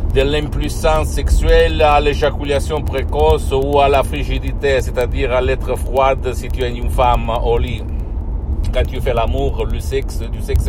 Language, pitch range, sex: Italian, 70-105 Hz, male